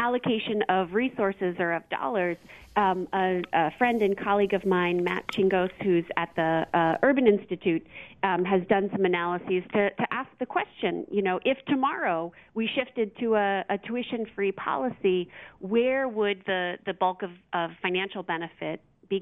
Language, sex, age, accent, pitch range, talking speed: English, female, 40-59, American, 180-220 Hz, 165 wpm